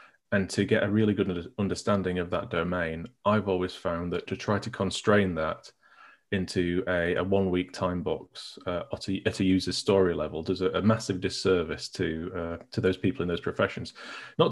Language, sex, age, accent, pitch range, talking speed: English, male, 30-49, British, 90-110 Hz, 195 wpm